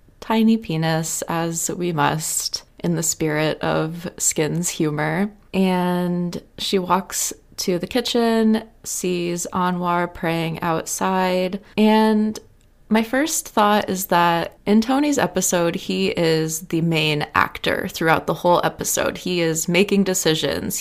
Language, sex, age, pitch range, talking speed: English, female, 20-39, 160-195 Hz, 125 wpm